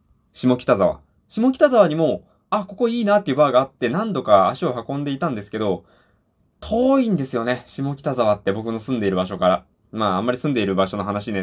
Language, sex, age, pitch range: Japanese, male, 20-39, 95-120 Hz